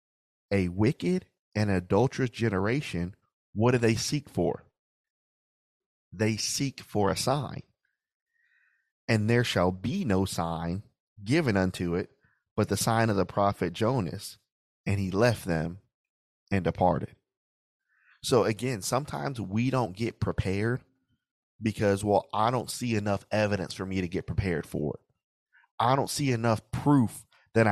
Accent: American